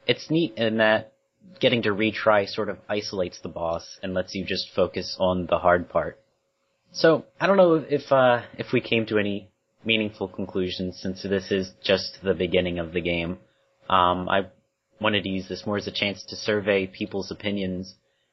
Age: 30-49